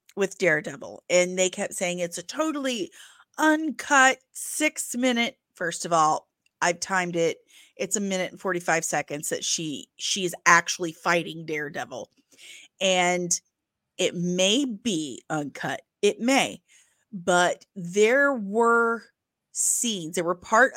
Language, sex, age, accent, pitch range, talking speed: English, female, 30-49, American, 175-220 Hz, 125 wpm